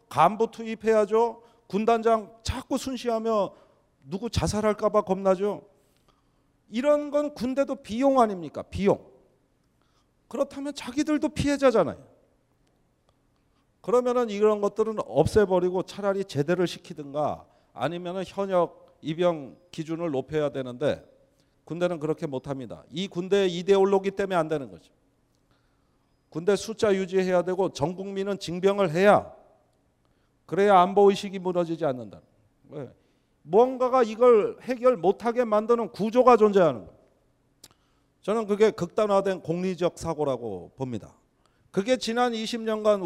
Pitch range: 165-225 Hz